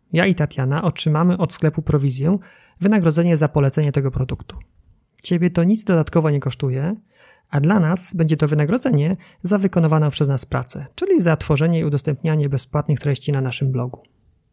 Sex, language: male, Polish